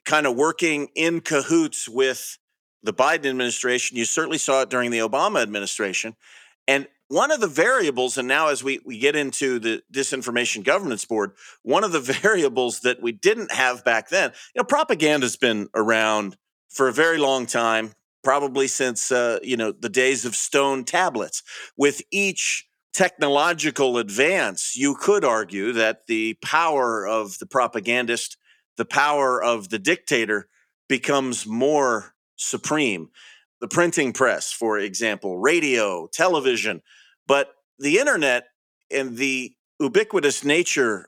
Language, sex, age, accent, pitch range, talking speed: English, male, 40-59, American, 120-155 Hz, 145 wpm